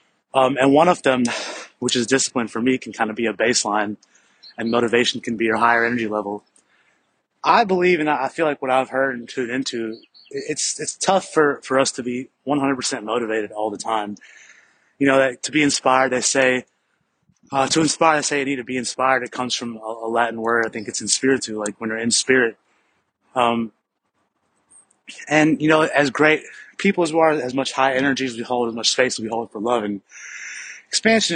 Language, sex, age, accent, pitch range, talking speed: English, male, 20-39, American, 115-135 Hz, 215 wpm